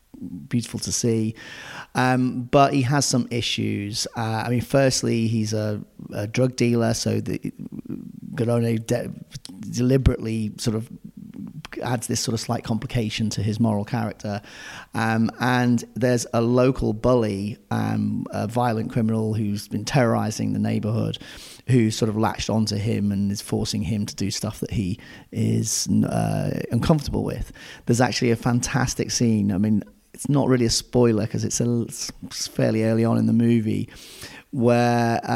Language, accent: English, British